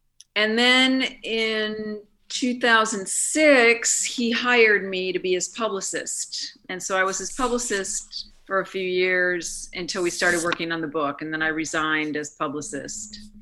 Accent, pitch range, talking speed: American, 155-190 Hz, 150 wpm